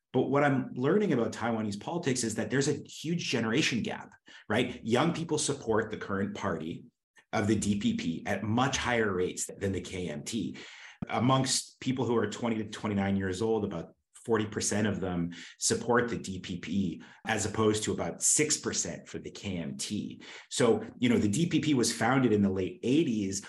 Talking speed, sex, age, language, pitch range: 170 wpm, male, 30-49, English, 100-125 Hz